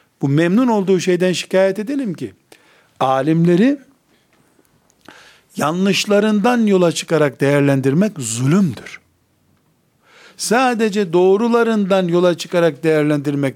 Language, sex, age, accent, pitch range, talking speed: Turkish, male, 60-79, native, 145-205 Hz, 80 wpm